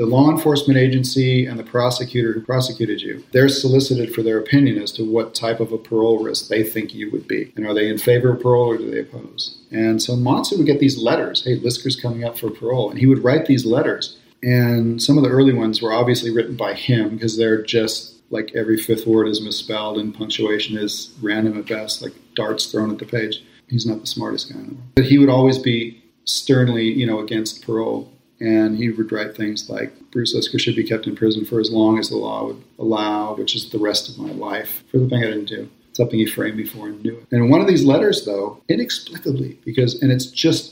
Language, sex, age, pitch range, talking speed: English, male, 40-59, 110-130 Hz, 230 wpm